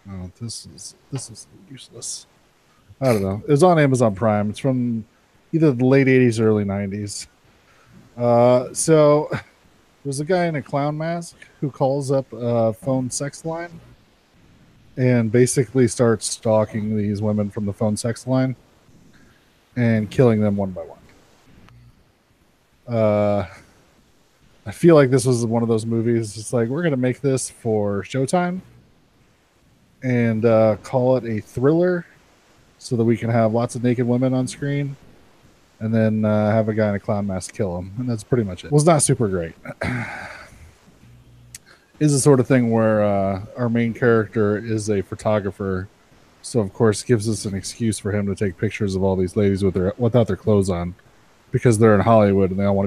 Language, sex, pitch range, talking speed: English, male, 105-125 Hz, 180 wpm